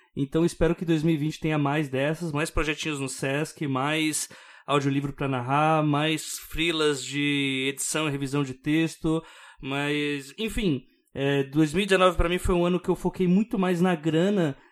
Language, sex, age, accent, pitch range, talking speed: Portuguese, male, 20-39, Brazilian, 135-170 Hz, 155 wpm